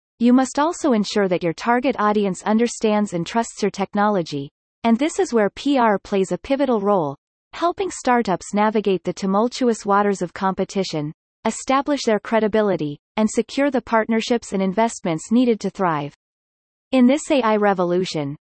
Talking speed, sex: 150 wpm, female